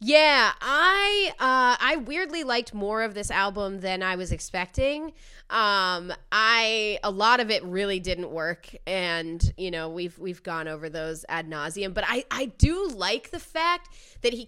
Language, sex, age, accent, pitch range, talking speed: English, female, 20-39, American, 190-255 Hz, 175 wpm